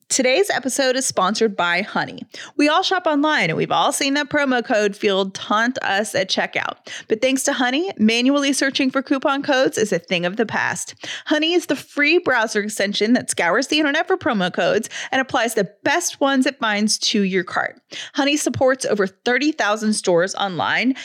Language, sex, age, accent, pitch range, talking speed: English, female, 30-49, American, 205-285 Hz, 190 wpm